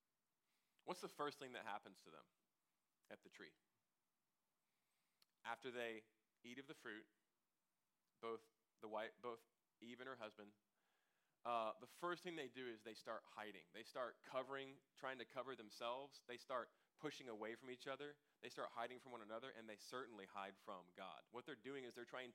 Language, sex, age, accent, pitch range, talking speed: English, male, 20-39, American, 110-135 Hz, 180 wpm